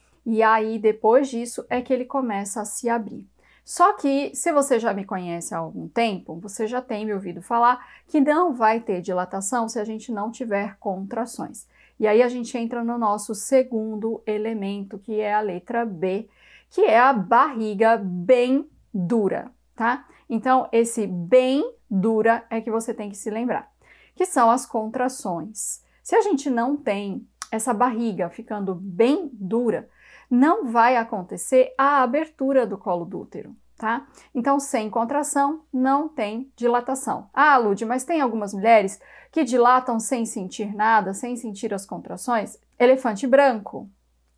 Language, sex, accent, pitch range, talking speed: Portuguese, female, Brazilian, 210-255 Hz, 160 wpm